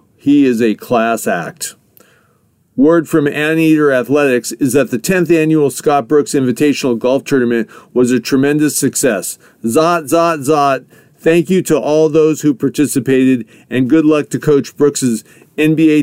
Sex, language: male, English